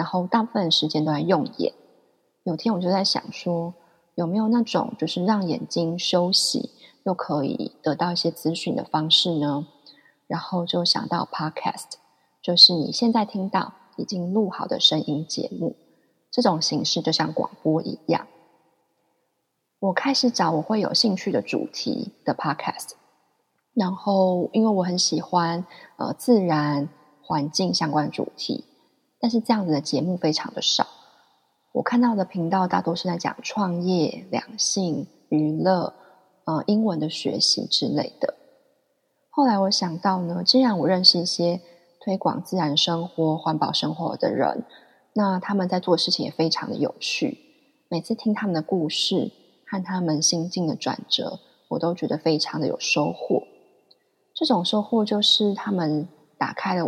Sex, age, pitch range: female, 20-39, 165-220 Hz